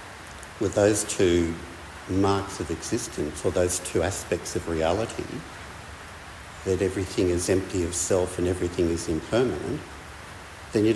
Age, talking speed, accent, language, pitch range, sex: 60-79, 130 wpm, Australian, English, 80-100 Hz, male